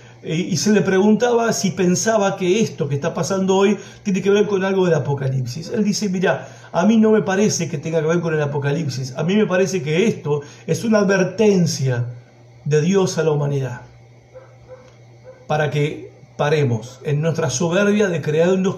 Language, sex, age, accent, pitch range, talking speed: Spanish, male, 50-69, Argentinian, 140-185 Hz, 180 wpm